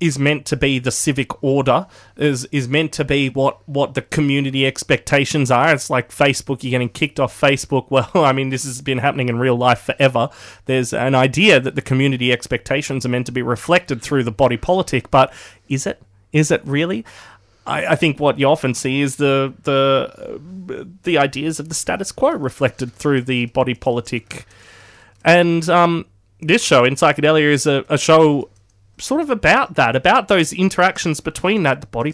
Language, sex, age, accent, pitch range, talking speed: English, male, 20-39, Australian, 125-150 Hz, 190 wpm